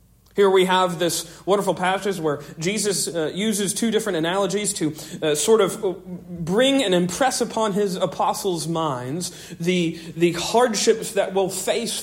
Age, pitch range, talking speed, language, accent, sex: 40-59, 155-195 Hz, 150 wpm, English, American, male